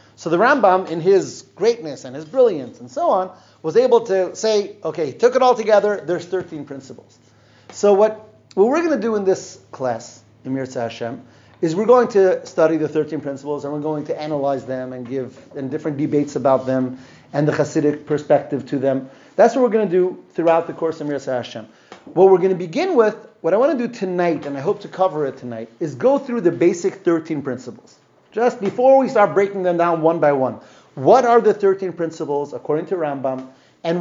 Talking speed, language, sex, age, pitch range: 210 wpm, English, male, 30-49, 135-200 Hz